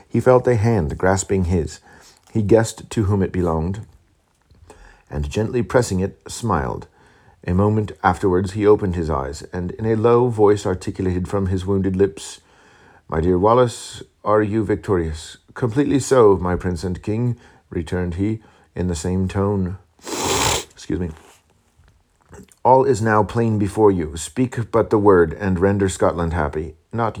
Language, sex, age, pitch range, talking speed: English, male, 40-59, 85-105 Hz, 150 wpm